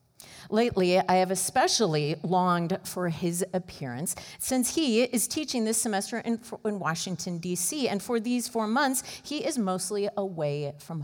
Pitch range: 145-210 Hz